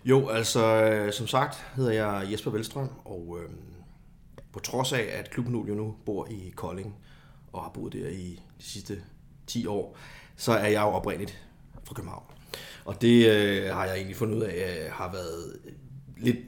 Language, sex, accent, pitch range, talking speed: Danish, male, native, 100-125 Hz, 180 wpm